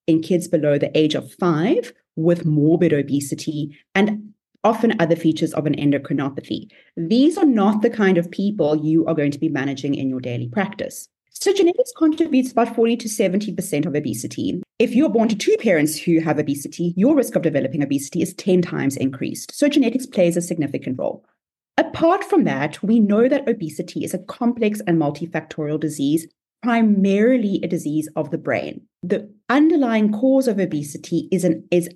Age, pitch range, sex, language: 30-49, 155-225 Hz, female, English